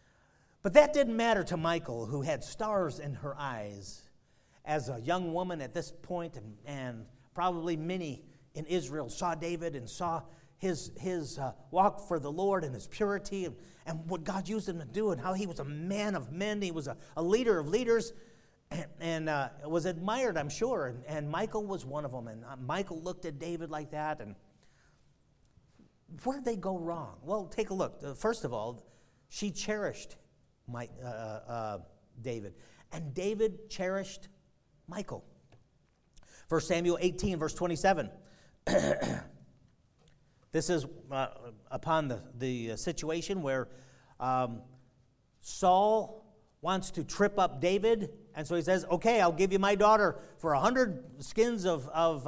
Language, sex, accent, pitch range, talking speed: English, male, American, 140-195 Hz, 165 wpm